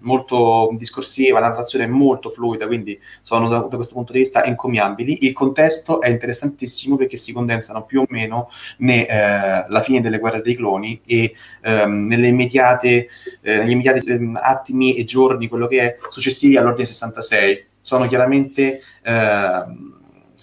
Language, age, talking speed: Italian, 30-49, 150 wpm